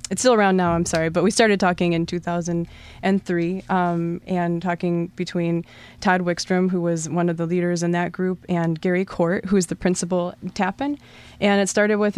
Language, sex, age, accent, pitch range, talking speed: English, female, 20-39, American, 170-185 Hz, 195 wpm